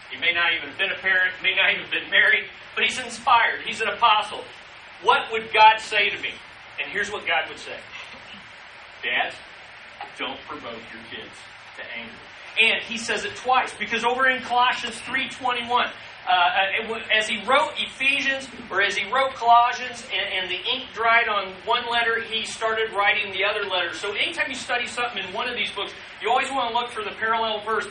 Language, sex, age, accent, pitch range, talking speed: English, male, 40-59, American, 200-245 Hz, 200 wpm